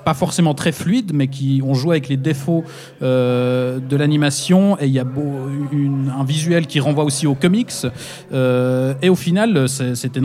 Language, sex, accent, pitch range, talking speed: French, male, French, 130-155 Hz, 185 wpm